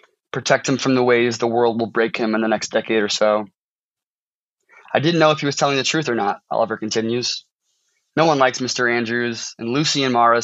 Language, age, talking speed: English, 20-39, 220 wpm